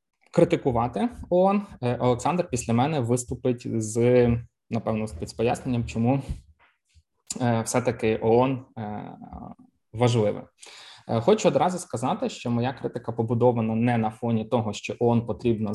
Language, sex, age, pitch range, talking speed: Ukrainian, male, 20-39, 110-125 Hz, 110 wpm